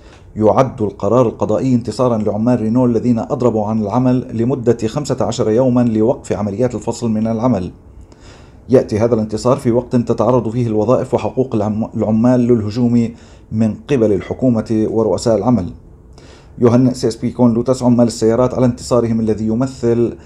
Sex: male